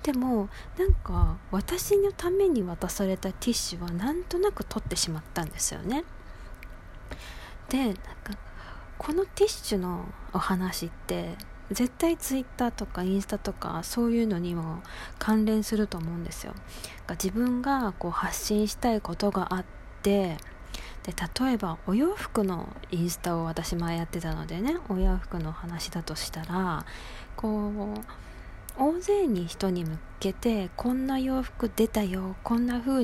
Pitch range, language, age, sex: 180-245 Hz, Japanese, 20-39, female